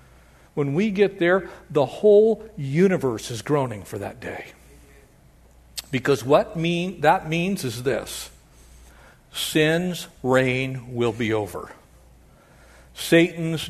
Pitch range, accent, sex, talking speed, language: 120-170 Hz, American, male, 110 wpm, English